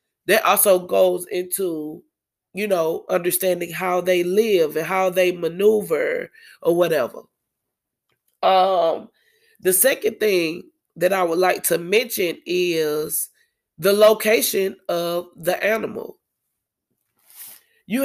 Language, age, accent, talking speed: English, 20-39, American, 110 wpm